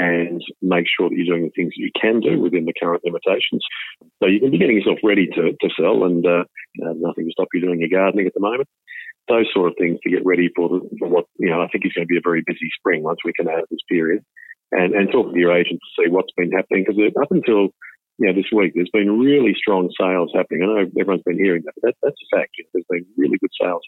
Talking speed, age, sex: 275 wpm, 40-59, male